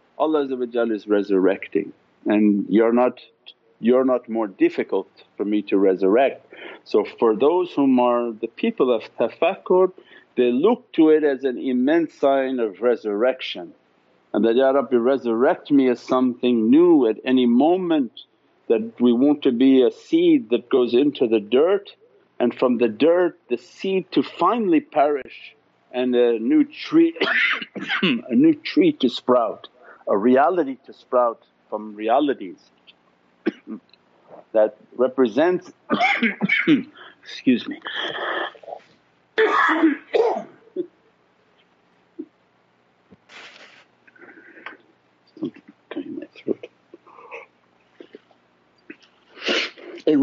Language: English